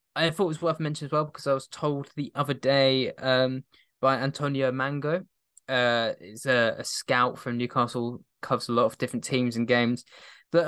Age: 20-39